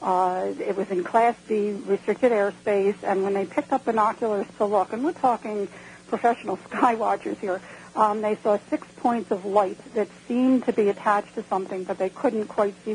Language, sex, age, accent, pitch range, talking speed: English, female, 60-79, American, 190-220 Hz, 195 wpm